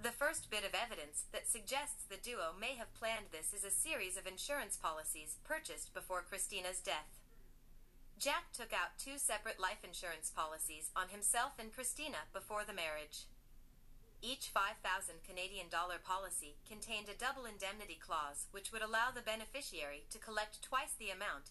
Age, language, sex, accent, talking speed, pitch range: 30-49, English, female, American, 160 wpm, 165-225 Hz